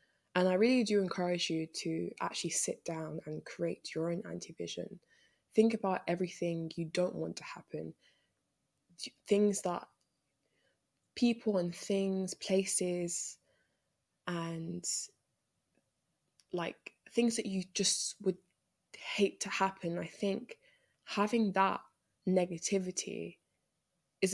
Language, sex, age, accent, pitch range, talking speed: English, female, 10-29, British, 170-200 Hz, 110 wpm